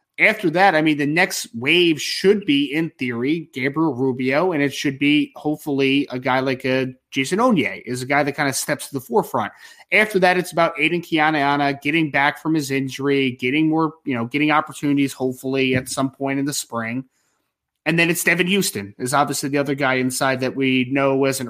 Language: English